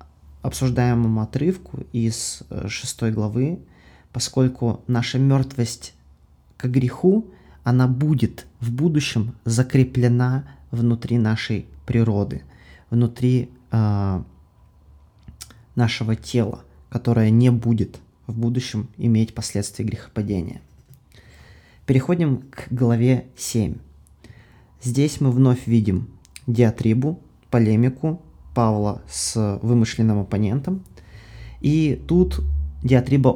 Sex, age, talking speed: male, 20-39, 85 wpm